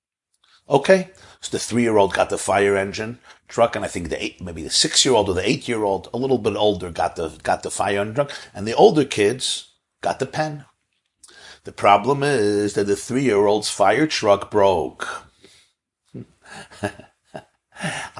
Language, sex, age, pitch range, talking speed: English, male, 50-69, 100-130 Hz, 160 wpm